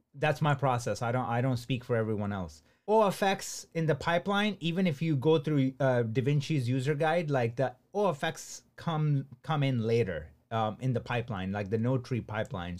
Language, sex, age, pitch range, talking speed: English, male, 30-49, 120-150 Hz, 200 wpm